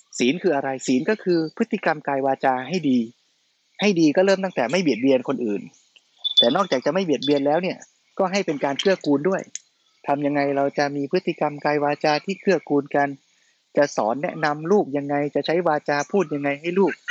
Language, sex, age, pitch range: Thai, male, 20-39, 135-170 Hz